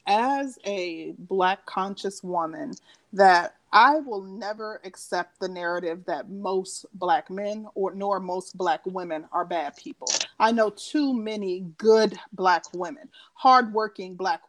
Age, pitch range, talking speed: 30-49, 190-245 Hz, 140 wpm